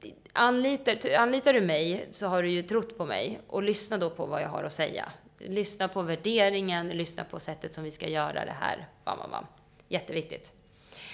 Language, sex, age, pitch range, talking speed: Swedish, female, 20-39, 170-210 Hz, 195 wpm